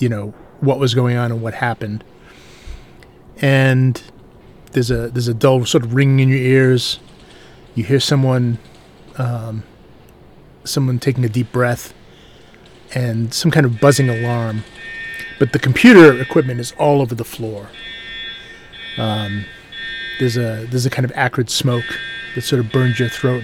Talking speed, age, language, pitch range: 155 wpm, 30-49, English, 115-130 Hz